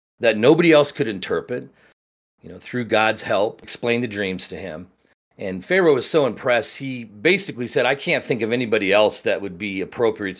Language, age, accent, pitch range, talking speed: English, 40-59, American, 95-130 Hz, 190 wpm